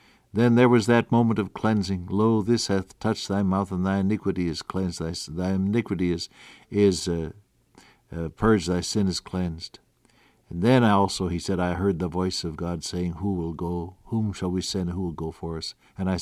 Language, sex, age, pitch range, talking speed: English, male, 60-79, 90-120 Hz, 205 wpm